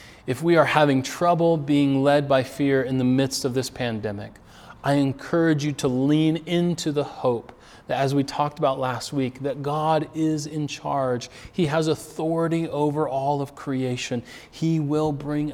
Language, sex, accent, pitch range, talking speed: English, male, American, 130-170 Hz, 175 wpm